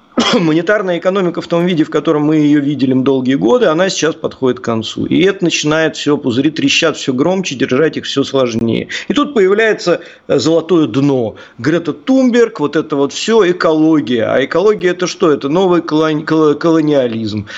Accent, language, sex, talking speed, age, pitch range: native, Russian, male, 165 wpm, 40-59, 140-190 Hz